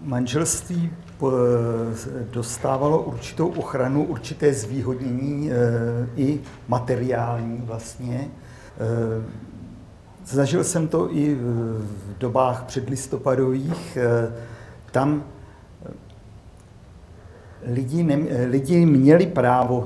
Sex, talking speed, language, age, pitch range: male, 65 wpm, Czech, 50-69, 115-145 Hz